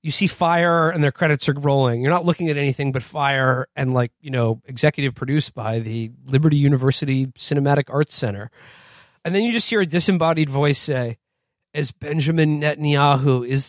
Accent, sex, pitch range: American, male, 130-150 Hz